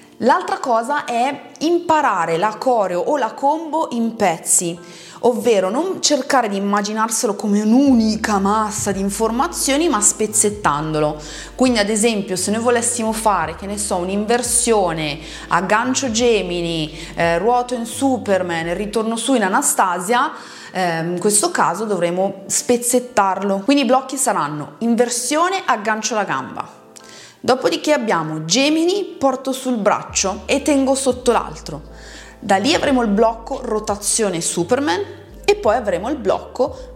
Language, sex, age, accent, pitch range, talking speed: Italian, female, 30-49, native, 180-255 Hz, 130 wpm